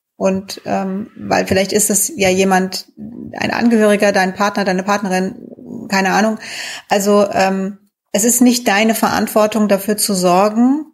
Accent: German